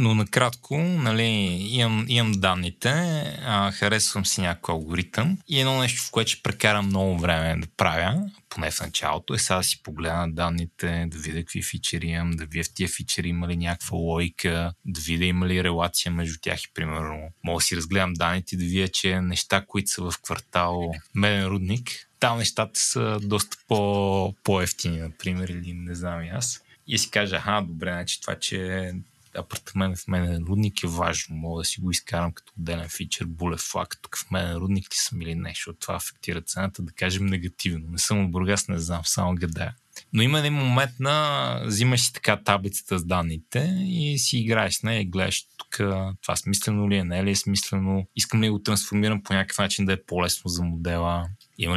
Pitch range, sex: 85-105 Hz, male